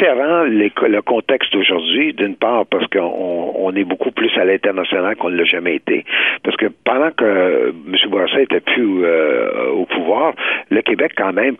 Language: French